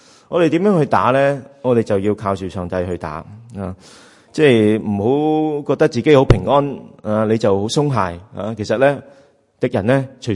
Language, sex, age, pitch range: Chinese, male, 30-49, 100-135 Hz